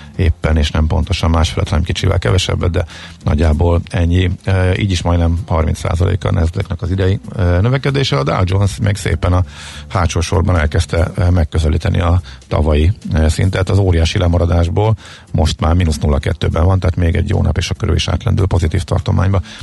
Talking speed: 165 wpm